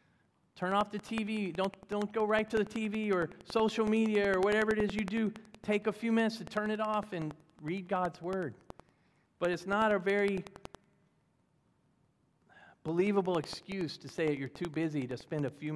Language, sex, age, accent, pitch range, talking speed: English, male, 40-59, American, 155-205 Hz, 185 wpm